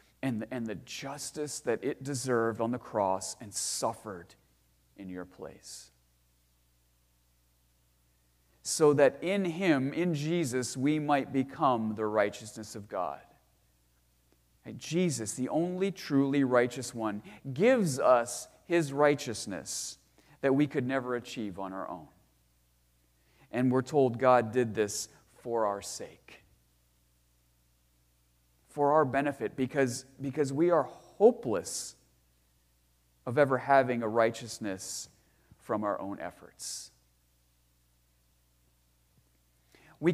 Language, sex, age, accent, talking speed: English, male, 40-59, American, 110 wpm